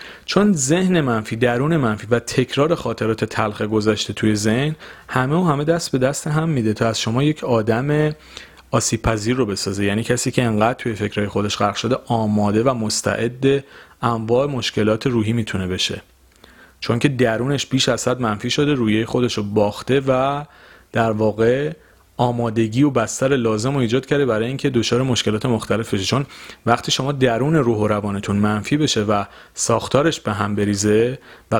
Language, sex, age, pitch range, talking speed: Persian, male, 40-59, 105-130 Hz, 165 wpm